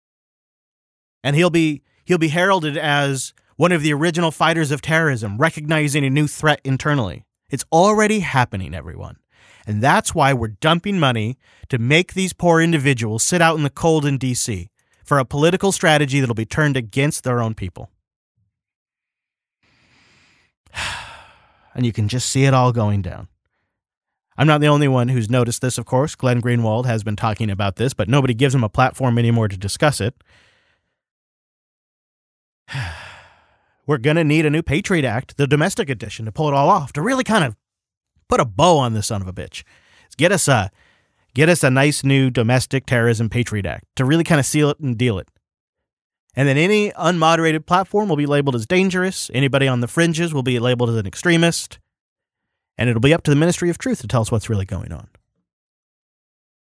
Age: 30-49